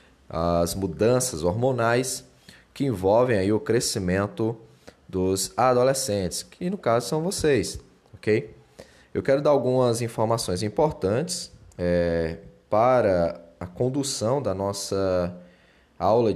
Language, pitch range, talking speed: Portuguese, 90-125 Hz, 100 wpm